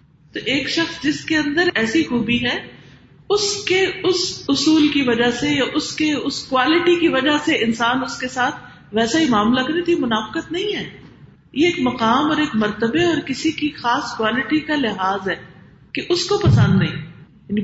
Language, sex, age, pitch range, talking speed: Urdu, female, 40-59, 205-310 Hz, 190 wpm